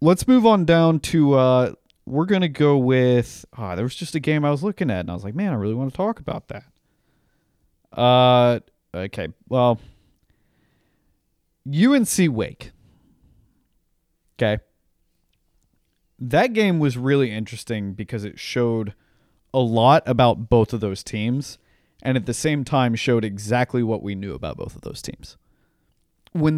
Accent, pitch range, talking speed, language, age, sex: American, 110-155 Hz, 155 wpm, English, 30-49, male